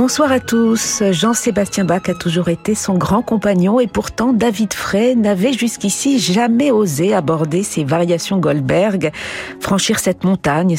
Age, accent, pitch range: 50-69, French, 165-220 Hz